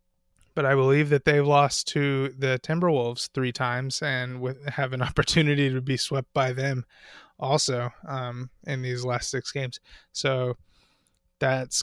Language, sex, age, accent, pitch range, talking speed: English, male, 20-39, American, 125-150 Hz, 145 wpm